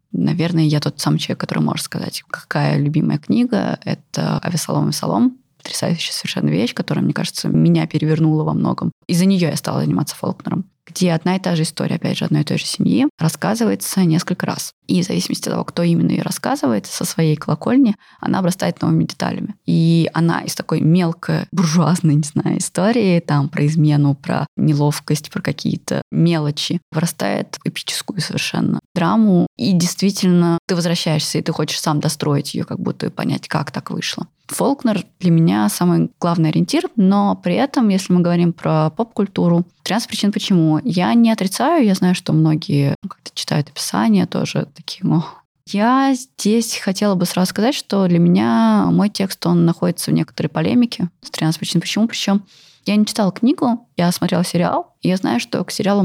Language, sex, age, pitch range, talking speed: Russian, female, 20-39, 160-205 Hz, 175 wpm